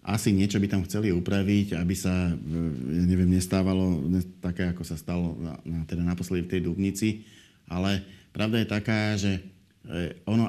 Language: Slovak